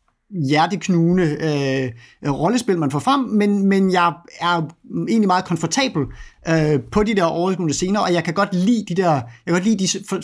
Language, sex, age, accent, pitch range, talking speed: Danish, male, 30-49, native, 150-195 Hz, 180 wpm